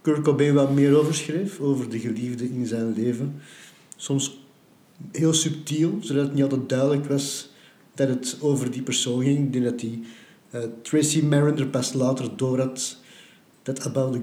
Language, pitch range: Dutch, 130-160 Hz